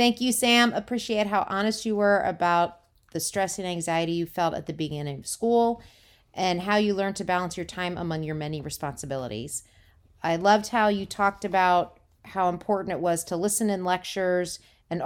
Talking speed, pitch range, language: 185 wpm, 165-215 Hz, English